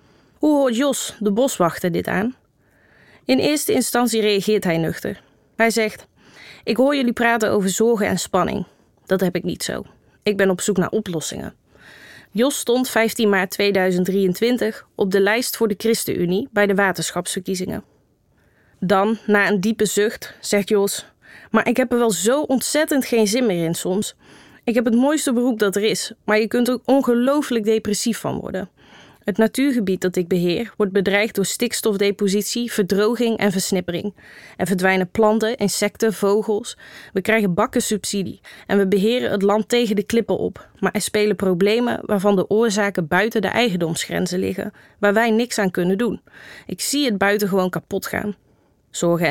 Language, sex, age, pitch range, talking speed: Dutch, female, 20-39, 195-230 Hz, 165 wpm